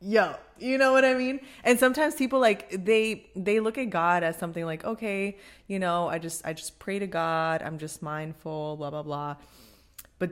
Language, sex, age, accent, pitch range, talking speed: English, female, 20-39, American, 160-200 Hz, 205 wpm